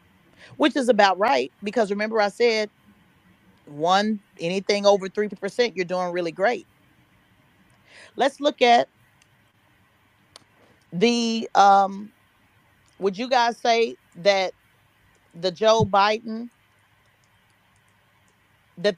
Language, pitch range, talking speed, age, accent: English, 150-225 Hz, 95 wpm, 30-49, American